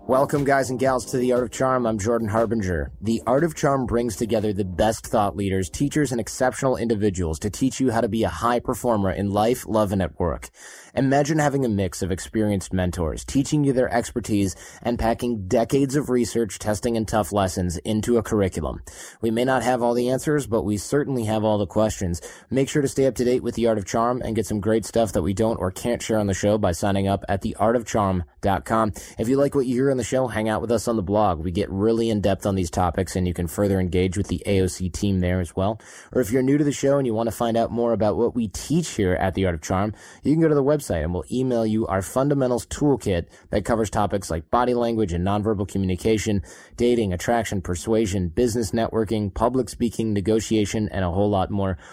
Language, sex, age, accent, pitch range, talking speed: English, male, 20-39, American, 100-120 Hz, 235 wpm